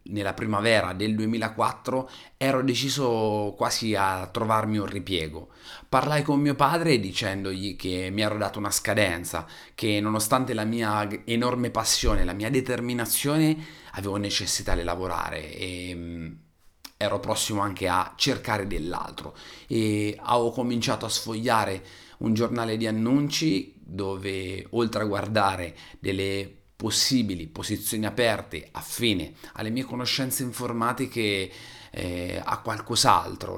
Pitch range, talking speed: 95-120 Hz, 120 wpm